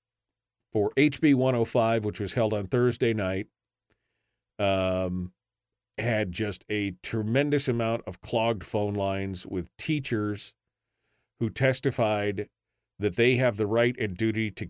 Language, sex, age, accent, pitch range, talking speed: English, male, 40-59, American, 105-135 Hz, 125 wpm